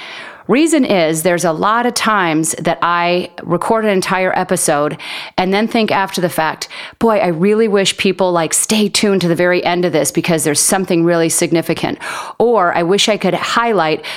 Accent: American